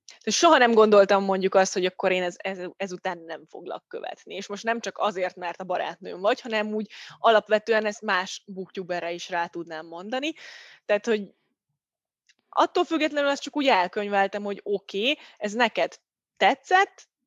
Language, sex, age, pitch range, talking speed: Hungarian, female, 20-39, 190-245 Hz, 165 wpm